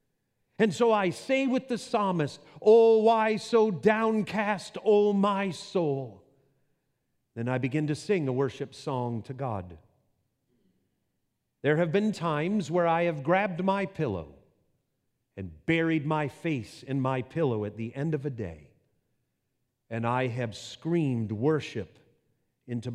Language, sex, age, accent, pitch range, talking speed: English, male, 40-59, American, 115-160 Hz, 140 wpm